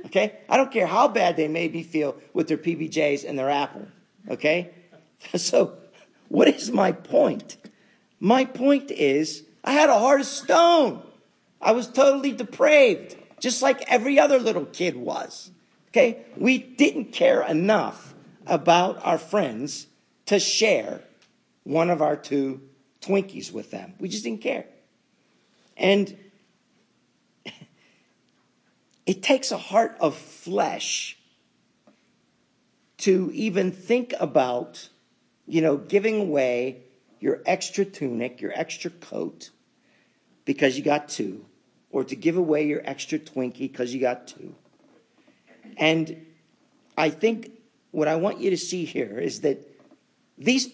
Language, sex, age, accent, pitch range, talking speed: English, male, 50-69, American, 150-235 Hz, 130 wpm